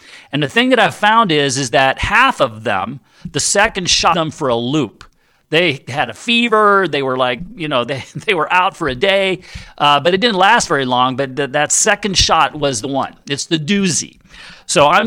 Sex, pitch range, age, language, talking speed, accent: male, 135-215 Hz, 50-69, English, 215 wpm, American